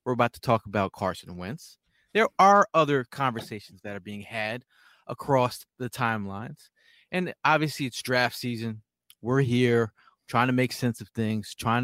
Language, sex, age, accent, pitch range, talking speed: English, male, 30-49, American, 115-155 Hz, 160 wpm